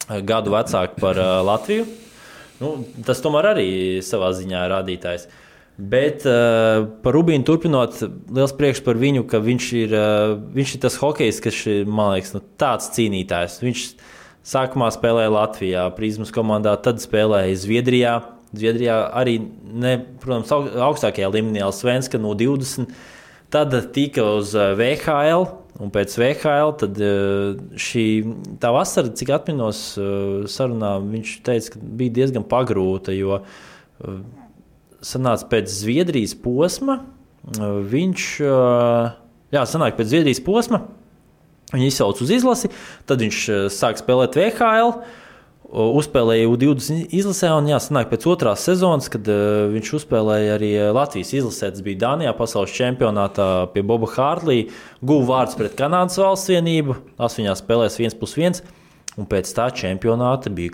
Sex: male